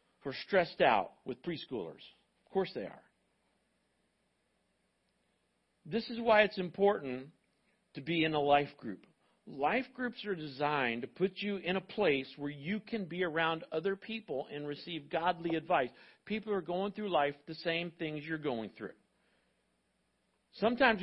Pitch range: 160-220 Hz